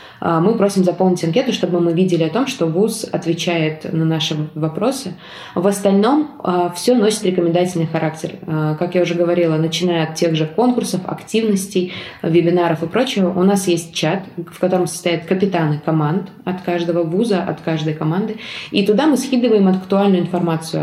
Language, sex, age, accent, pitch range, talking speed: Russian, female, 20-39, native, 165-195 Hz, 160 wpm